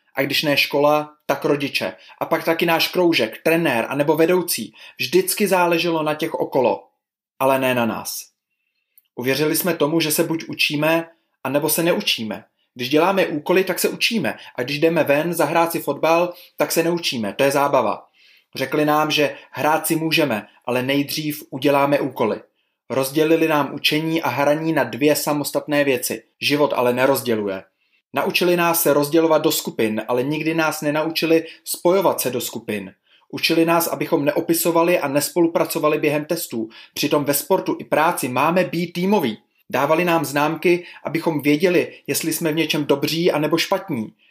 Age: 20-39